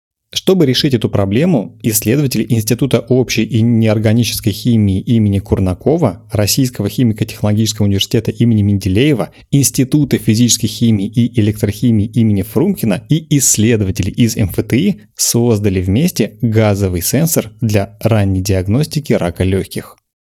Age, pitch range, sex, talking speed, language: 30-49, 105-130 Hz, male, 110 wpm, Russian